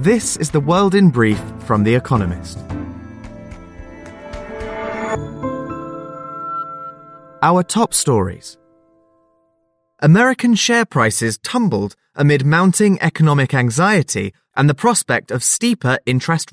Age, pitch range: 20-39, 110-170 Hz